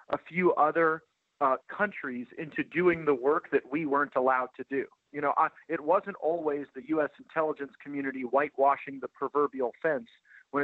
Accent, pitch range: American, 135-170 Hz